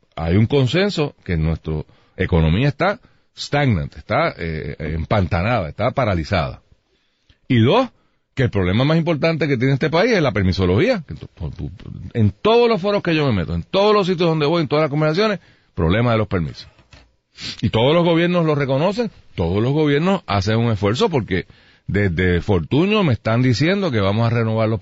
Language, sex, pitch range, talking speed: Spanish, male, 85-135 Hz, 175 wpm